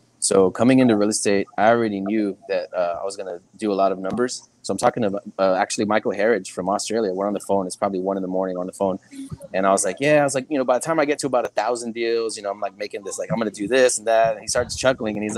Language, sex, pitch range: English, male, 95-115 Hz